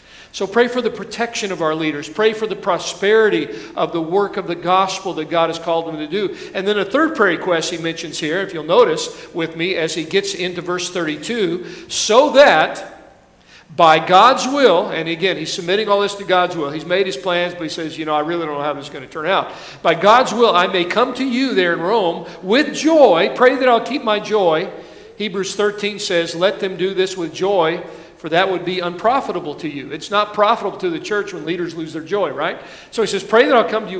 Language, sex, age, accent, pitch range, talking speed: English, male, 50-69, American, 170-235 Hz, 235 wpm